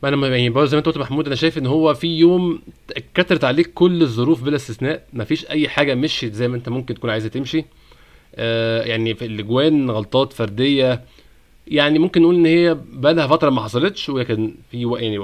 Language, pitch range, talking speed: Arabic, 115-145 Hz, 175 wpm